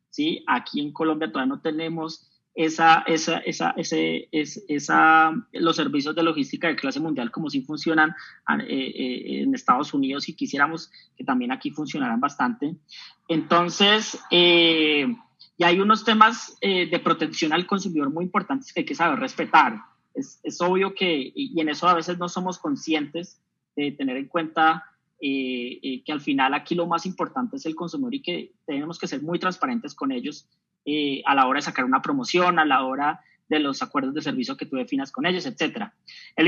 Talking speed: 185 wpm